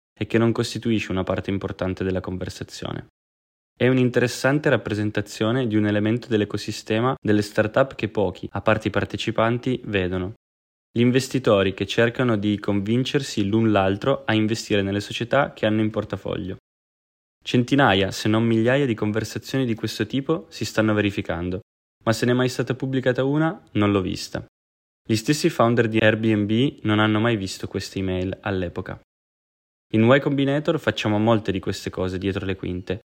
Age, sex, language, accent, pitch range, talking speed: 20-39, male, Italian, native, 100-120 Hz, 160 wpm